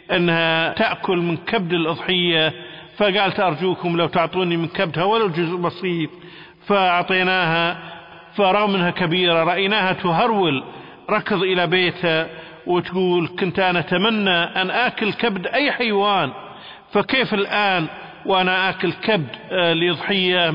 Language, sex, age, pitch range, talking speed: Arabic, male, 50-69, 160-190 Hz, 110 wpm